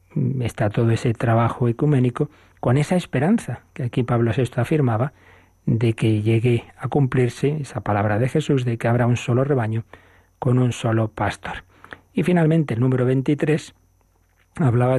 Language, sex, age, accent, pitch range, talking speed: Spanish, male, 40-59, Spanish, 115-150 Hz, 150 wpm